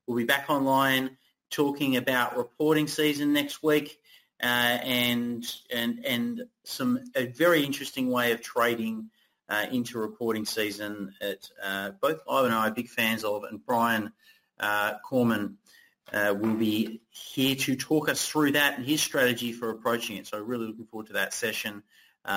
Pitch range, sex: 115-145 Hz, male